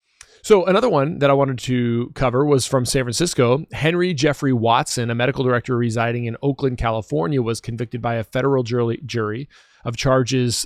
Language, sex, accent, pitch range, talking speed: English, male, American, 115-135 Hz, 170 wpm